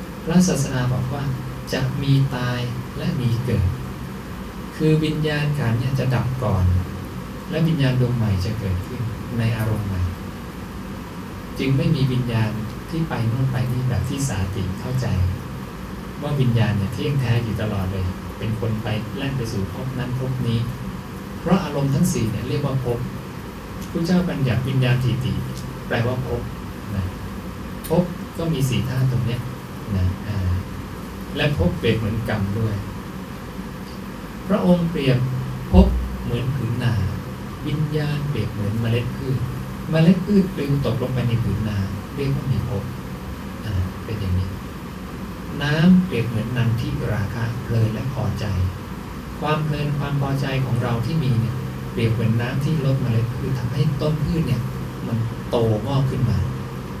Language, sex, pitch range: English, male, 100-135 Hz